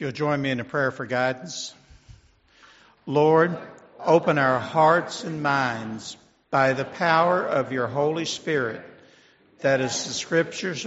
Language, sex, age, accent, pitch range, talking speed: English, male, 60-79, American, 135-170 Hz, 140 wpm